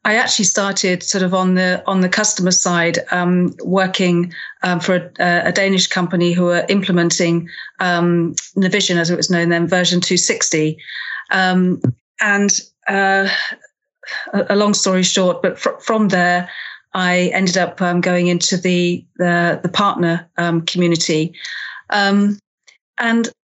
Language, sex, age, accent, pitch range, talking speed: English, female, 40-59, British, 175-195 Hz, 150 wpm